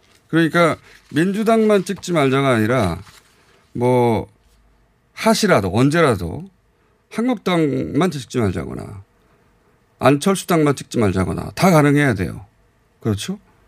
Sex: male